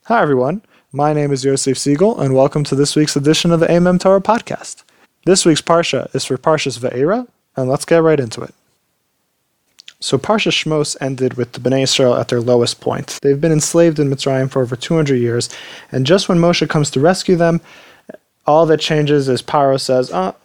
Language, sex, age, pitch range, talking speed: English, male, 20-39, 135-165 Hz, 200 wpm